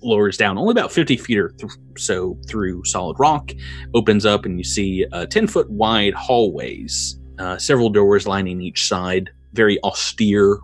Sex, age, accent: male, 30-49, American